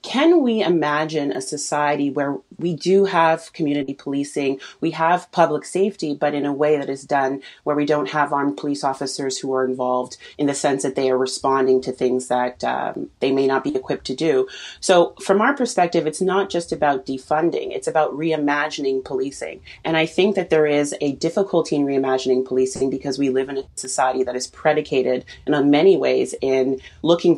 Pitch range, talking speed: 130-155 Hz, 195 wpm